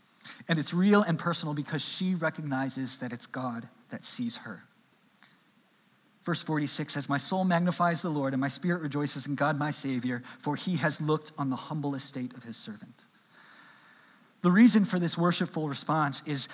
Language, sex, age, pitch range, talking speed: English, male, 30-49, 145-185 Hz, 175 wpm